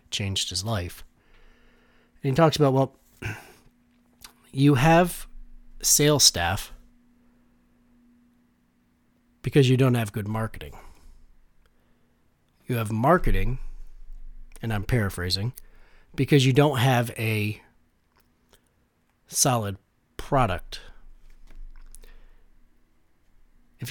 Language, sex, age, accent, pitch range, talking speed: English, male, 40-59, American, 95-130 Hz, 80 wpm